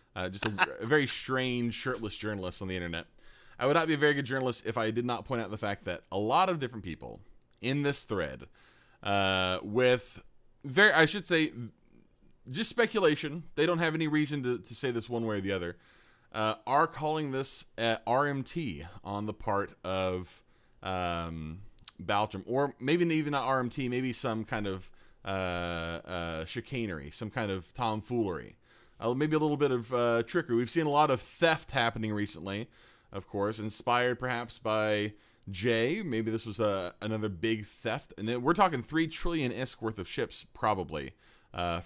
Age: 20-39